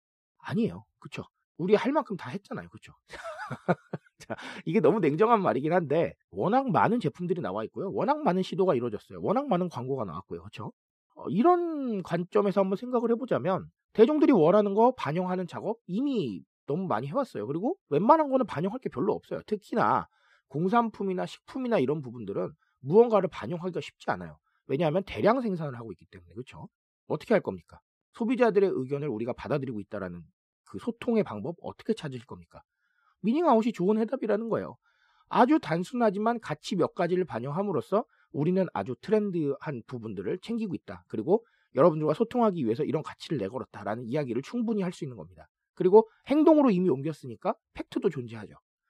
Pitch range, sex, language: 150-235 Hz, male, Korean